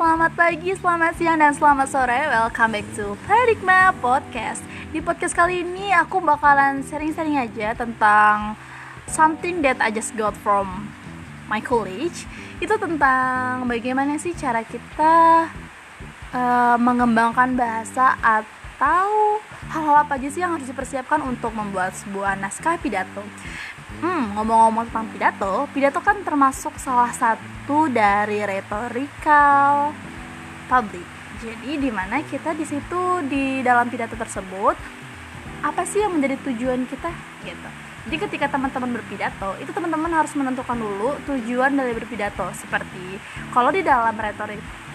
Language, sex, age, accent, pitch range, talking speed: Indonesian, female, 20-39, native, 230-320 Hz, 125 wpm